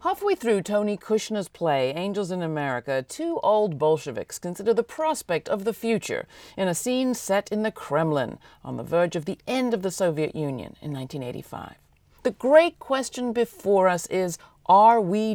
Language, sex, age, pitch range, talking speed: English, female, 50-69, 165-225 Hz, 170 wpm